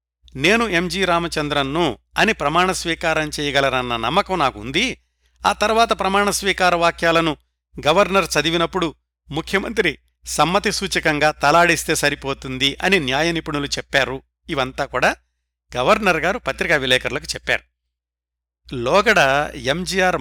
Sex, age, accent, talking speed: male, 60-79, native, 95 wpm